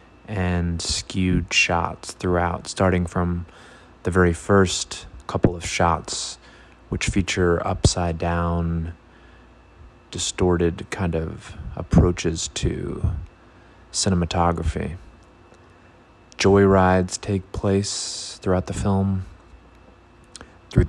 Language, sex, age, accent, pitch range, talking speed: English, male, 20-39, American, 85-95 Hz, 85 wpm